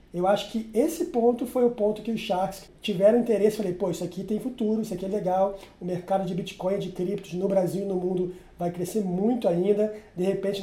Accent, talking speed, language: Brazilian, 230 wpm, Portuguese